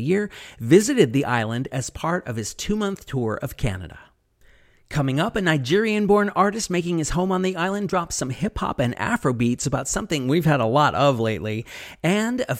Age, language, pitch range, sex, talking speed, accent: 30-49, English, 125-175 Hz, male, 185 wpm, American